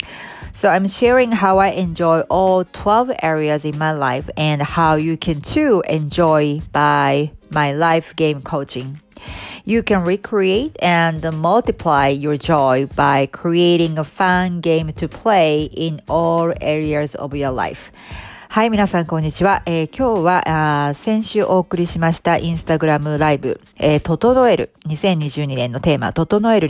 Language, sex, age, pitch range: Japanese, female, 40-59, 150-195 Hz